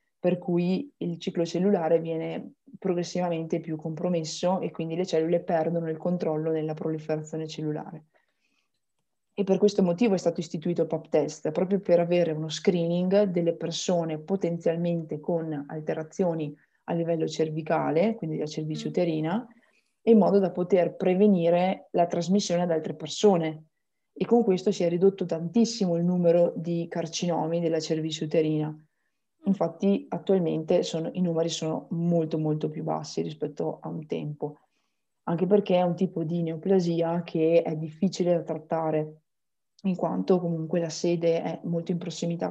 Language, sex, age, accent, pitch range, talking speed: Italian, female, 20-39, native, 160-180 Hz, 145 wpm